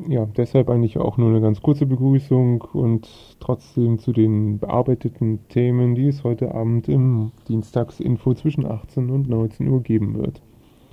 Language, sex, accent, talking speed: German, male, German, 155 wpm